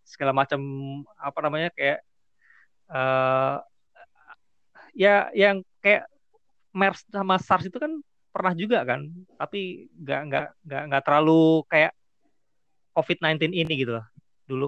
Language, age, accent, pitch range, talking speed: Indonesian, 20-39, native, 120-150 Hz, 110 wpm